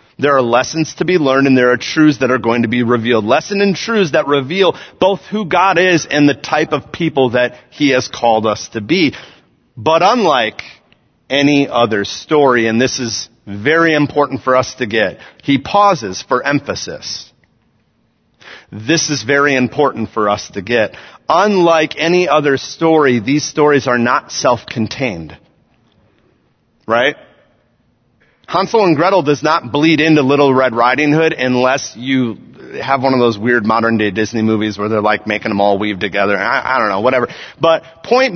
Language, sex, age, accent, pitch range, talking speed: English, male, 40-59, American, 125-185 Hz, 175 wpm